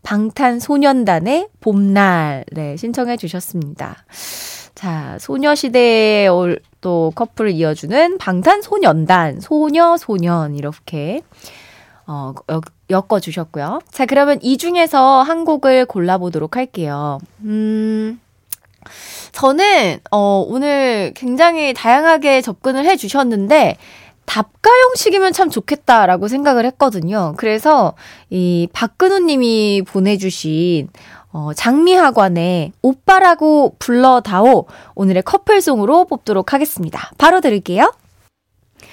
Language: Korean